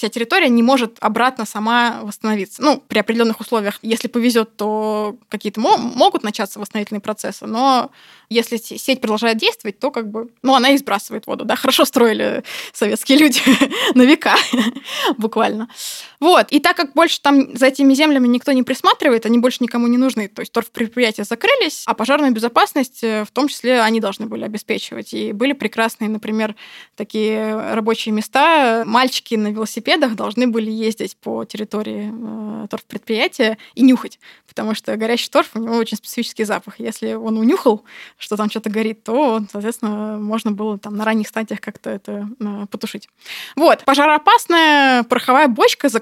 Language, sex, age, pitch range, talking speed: Russian, female, 20-39, 215-265 Hz, 160 wpm